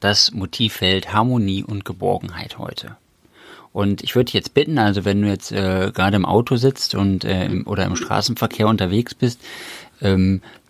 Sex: male